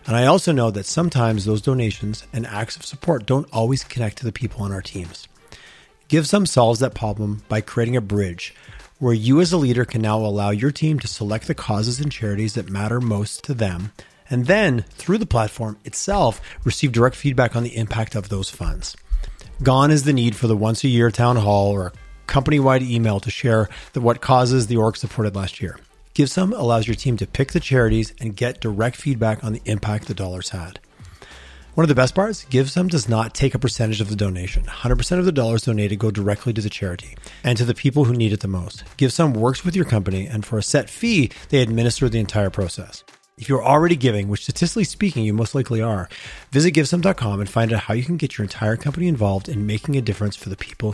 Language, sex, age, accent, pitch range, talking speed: English, male, 30-49, American, 105-135 Hz, 220 wpm